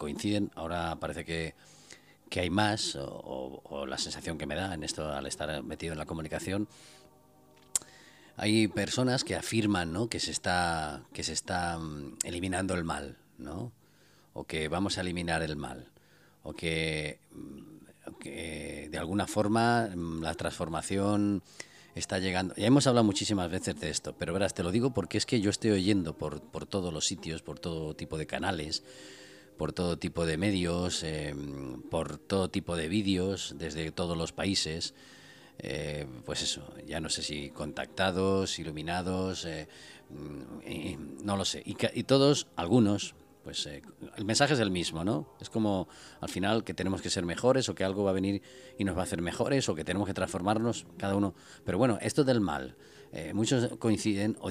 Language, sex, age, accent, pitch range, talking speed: Spanish, male, 40-59, Spanish, 80-105 Hz, 180 wpm